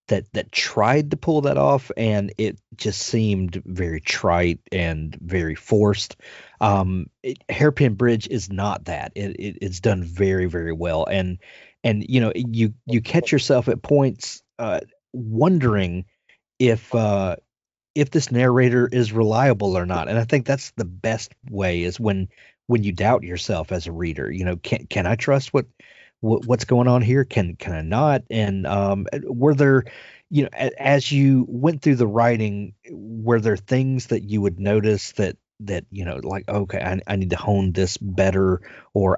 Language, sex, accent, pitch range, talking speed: English, male, American, 95-125 Hz, 175 wpm